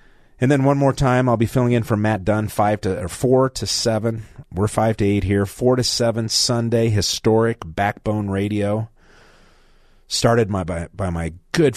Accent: American